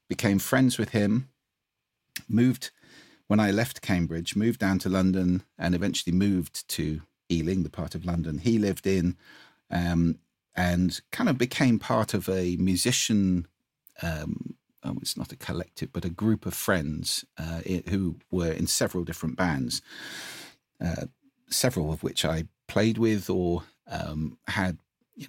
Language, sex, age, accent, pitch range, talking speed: English, male, 50-69, British, 85-115 Hz, 145 wpm